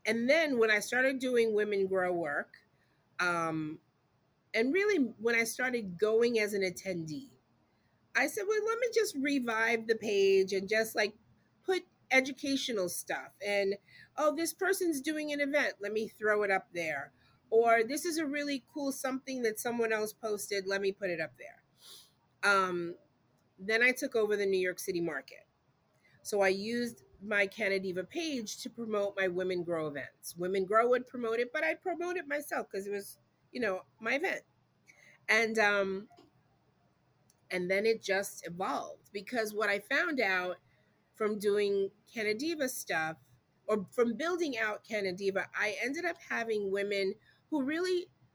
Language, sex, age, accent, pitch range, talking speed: English, female, 30-49, American, 190-260 Hz, 165 wpm